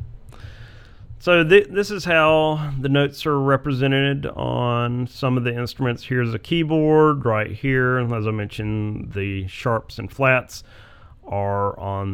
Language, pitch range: English, 100-130 Hz